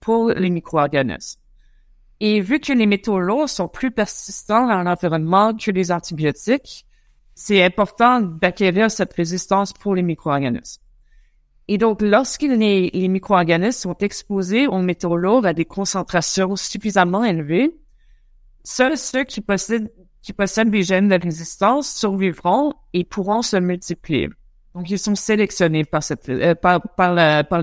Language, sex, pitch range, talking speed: French, female, 175-220 Hz, 145 wpm